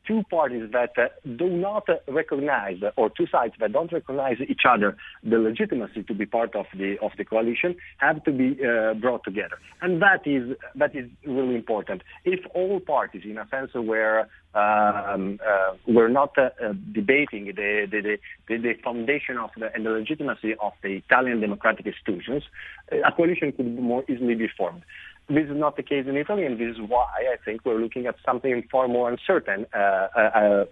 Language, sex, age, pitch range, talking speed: English, male, 40-59, 110-145 Hz, 195 wpm